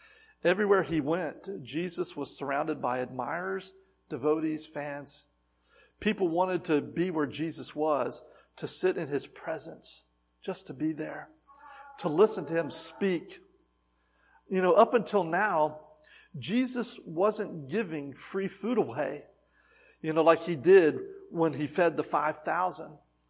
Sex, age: male, 50-69